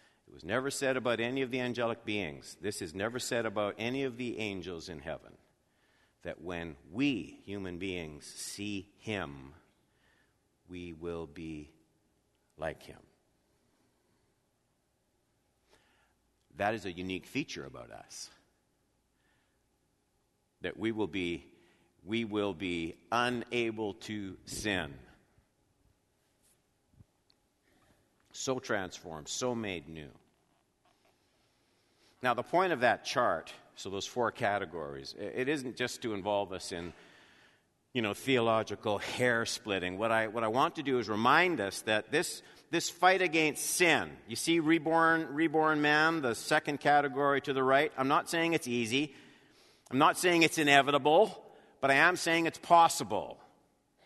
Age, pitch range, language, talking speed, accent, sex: 50-69, 95-145 Hz, English, 130 wpm, American, male